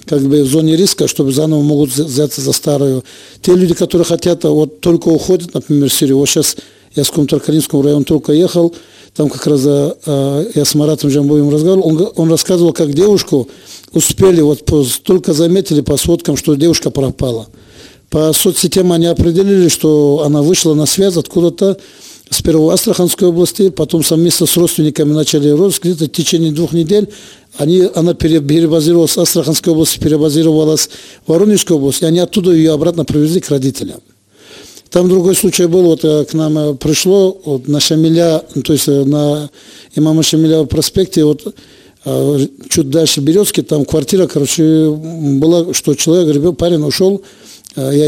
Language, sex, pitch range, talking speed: Russian, male, 150-175 Hz, 160 wpm